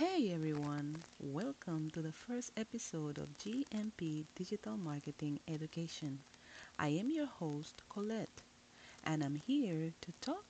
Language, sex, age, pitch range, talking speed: English, female, 30-49, 155-230 Hz, 125 wpm